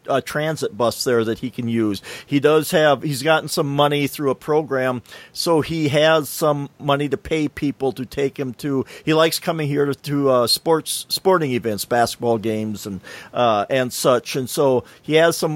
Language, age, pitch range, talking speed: English, 50-69, 125-155 Hz, 190 wpm